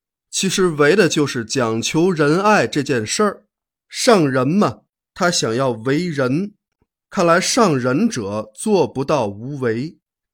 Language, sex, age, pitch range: Chinese, male, 20-39, 125-200 Hz